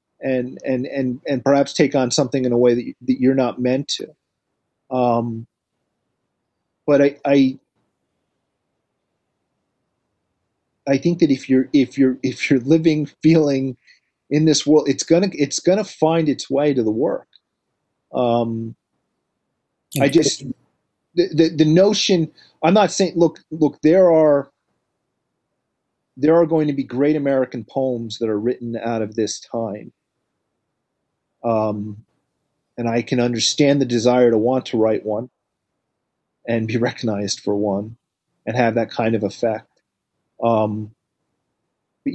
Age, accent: 30-49, American